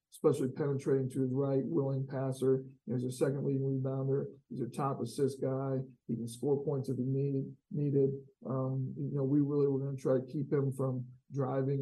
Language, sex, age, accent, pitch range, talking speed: English, male, 50-69, American, 130-140 Hz, 195 wpm